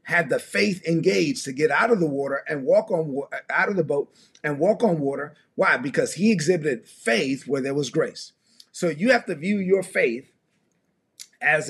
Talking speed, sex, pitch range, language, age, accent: 195 wpm, male, 160-220 Hz, English, 30-49, American